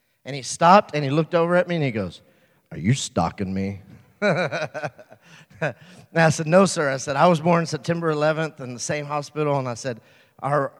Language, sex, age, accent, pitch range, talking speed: English, male, 30-49, American, 145-185 Hz, 200 wpm